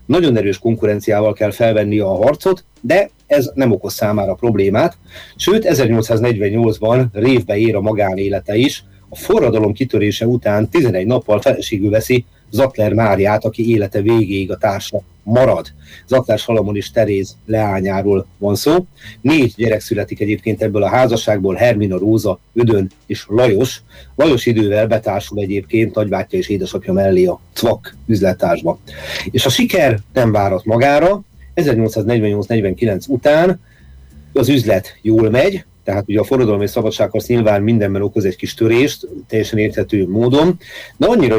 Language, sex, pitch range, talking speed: Hungarian, male, 105-120 Hz, 140 wpm